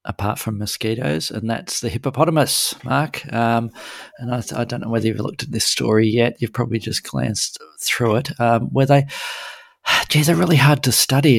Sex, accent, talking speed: male, Australian, 190 wpm